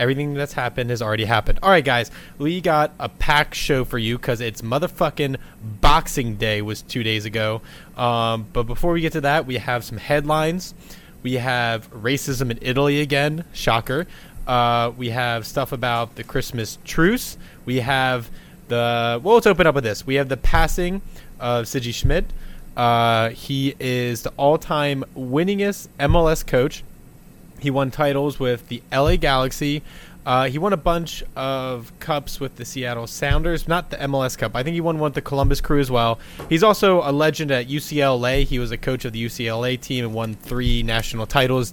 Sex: male